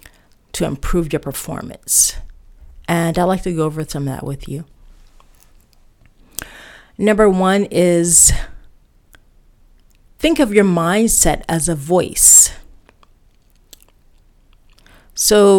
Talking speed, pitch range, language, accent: 100 wpm, 155-200 Hz, English, American